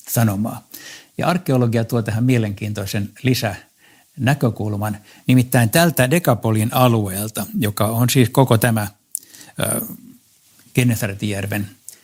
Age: 60-79